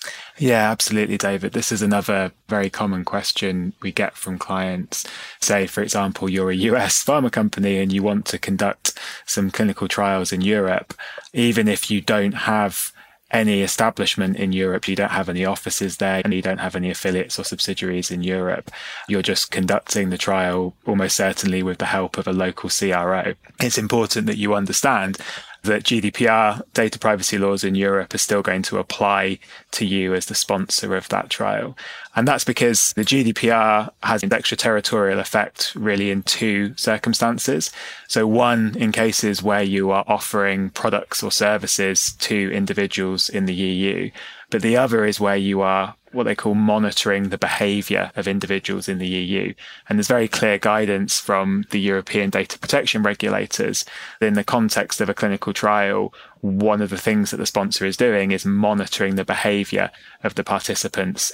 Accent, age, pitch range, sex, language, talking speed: British, 20-39, 95-105 Hz, male, English, 175 wpm